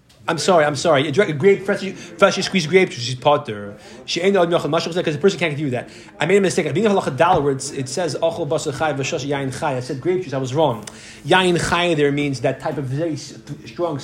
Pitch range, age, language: 140-190 Hz, 30-49, English